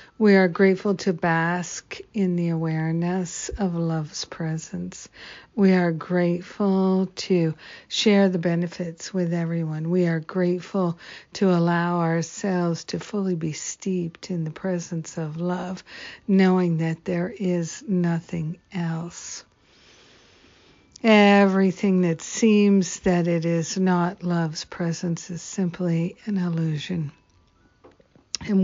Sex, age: female, 60-79